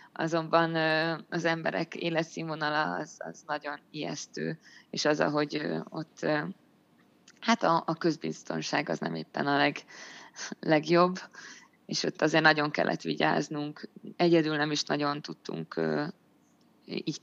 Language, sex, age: Hungarian, female, 20-39